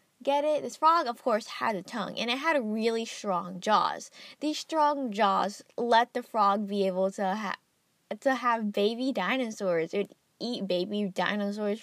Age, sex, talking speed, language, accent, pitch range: 10-29, female, 175 wpm, English, American, 195-270 Hz